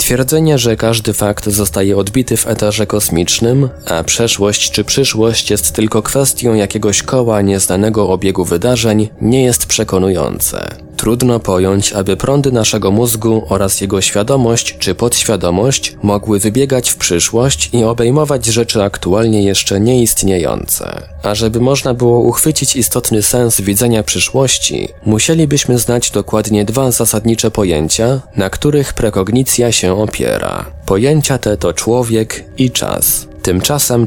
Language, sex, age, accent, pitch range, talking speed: Polish, male, 20-39, native, 95-120 Hz, 125 wpm